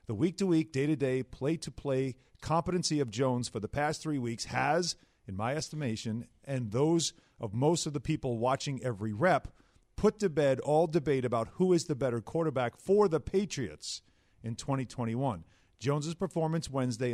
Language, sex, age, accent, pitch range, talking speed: English, male, 40-59, American, 125-165 Hz, 160 wpm